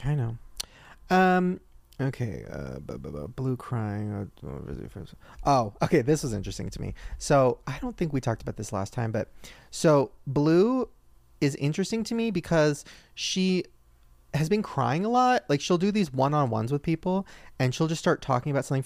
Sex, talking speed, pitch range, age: male, 175 wpm, 115-165 Hz, 30-49